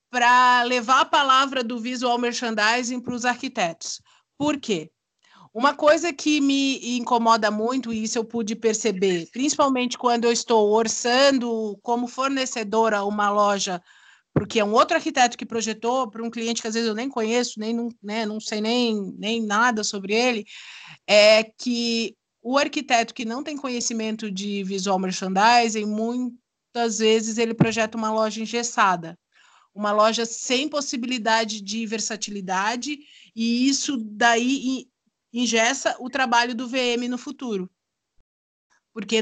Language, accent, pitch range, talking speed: Portuguese, Brazilian, 210-250 Hz, 140 wpm